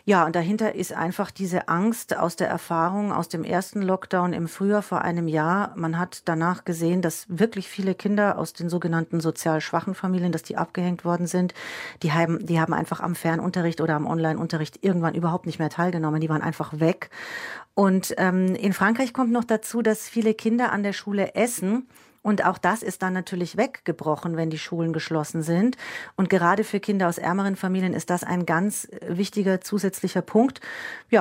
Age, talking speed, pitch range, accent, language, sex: 40-59, 190 wpm, 170-205 Hz, German, German, female